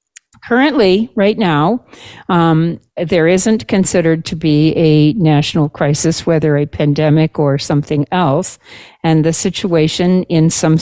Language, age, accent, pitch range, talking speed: English, 50-69, American, 140-165 Hz, 130 wpm